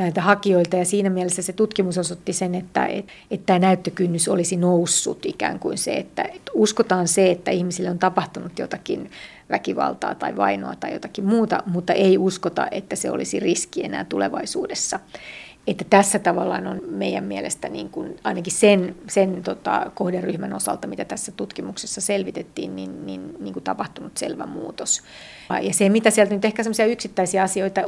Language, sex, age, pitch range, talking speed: Finnish, female, 30-49, 180-195 Hz, 160 wpm